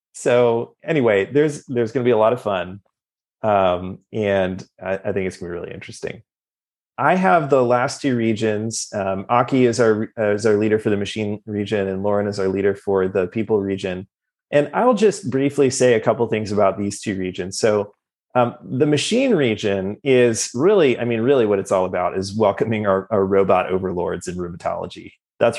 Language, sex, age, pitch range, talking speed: English, male, 30-49, 100-120 Hz, 200 wpm